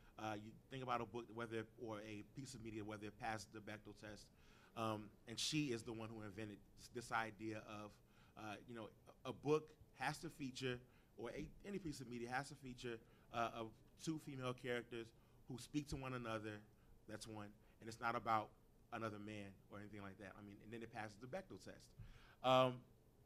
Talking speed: 205 wpm